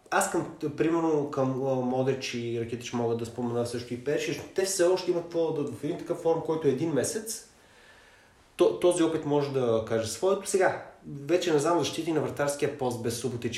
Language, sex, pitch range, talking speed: Bulgarian, male, 115-150 Hz, 185 wpm